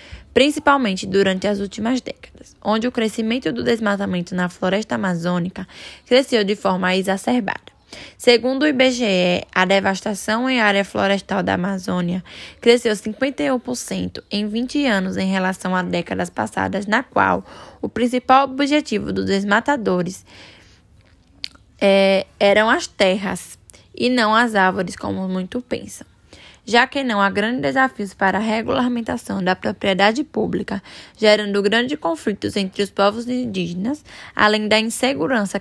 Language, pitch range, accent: Portuguese, 190-245 Hz, Brazilian